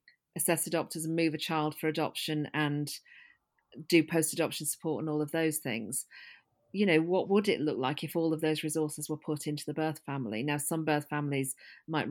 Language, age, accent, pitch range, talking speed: English, 40-59, British, 145-175 Hz, 200 wpm